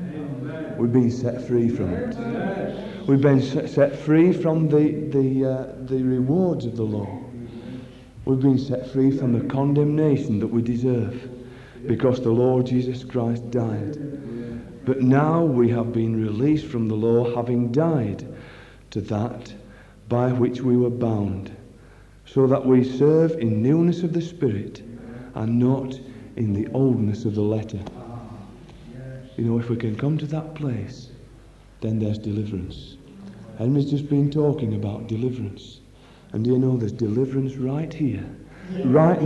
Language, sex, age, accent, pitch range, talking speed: English, male, 50-69, British, 120-150 Hz, 150 wpm